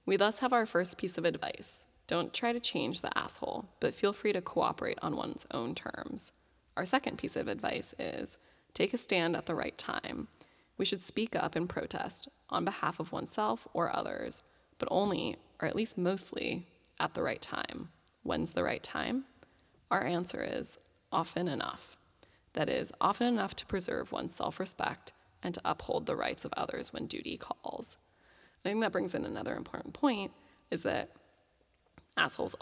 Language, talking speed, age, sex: English, 175 wpm, 20-39, female